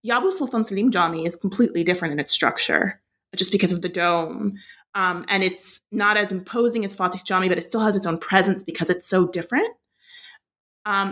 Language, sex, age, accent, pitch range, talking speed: English, female, 30-49, American, 180-225 Hz, 195 wpm